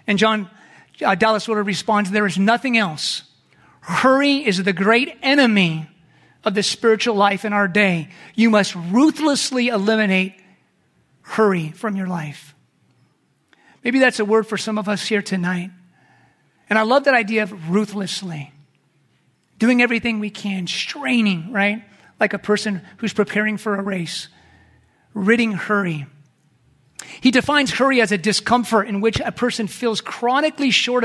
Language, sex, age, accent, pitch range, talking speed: English, male, 40-59, American, 195-235 Hz, 145 wpm